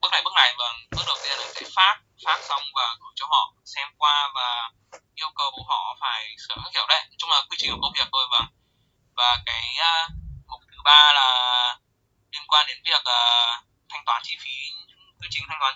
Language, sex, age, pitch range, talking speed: Vietnamese, male, 20-39, 115-145 Hz, 225 wpm